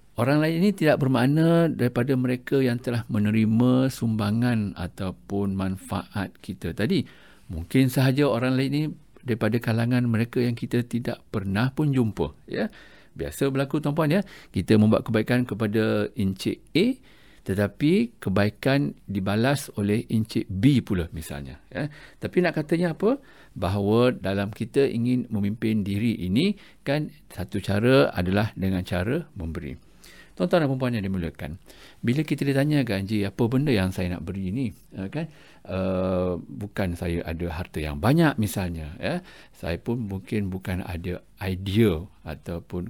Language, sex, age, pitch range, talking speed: English, male, 50-69, 95-135 Hz, 140 wpm